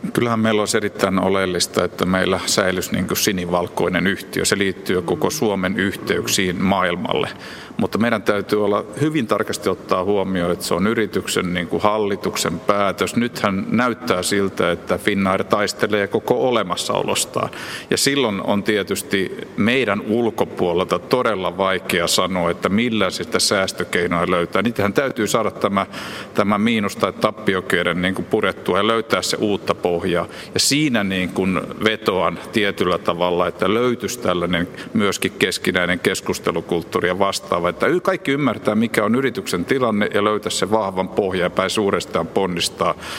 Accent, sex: native, male